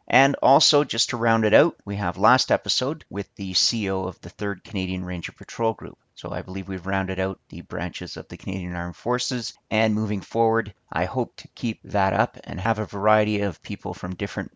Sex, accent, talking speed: male, American, 210 wpm